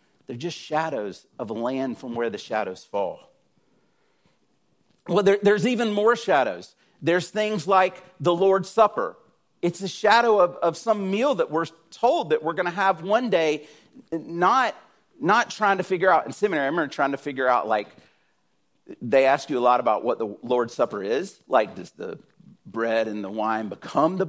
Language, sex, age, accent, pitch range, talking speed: English, male, 40-59, American, 150-205 Hz, 185 wpm